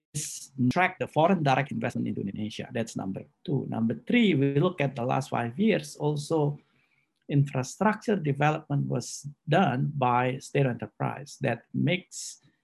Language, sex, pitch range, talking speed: Indonesian, male, 115-145 Hz, 140 wpm